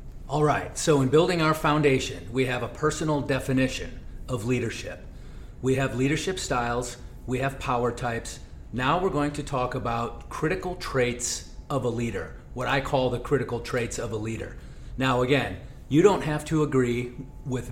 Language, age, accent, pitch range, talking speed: English, 40-59, American, 120-145 Hz, 170 wpm